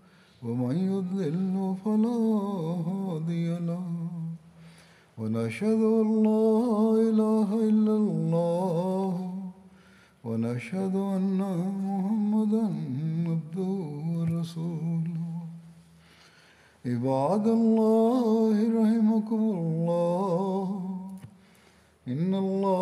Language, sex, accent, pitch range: Malayalam, male, native, 170-215 Hz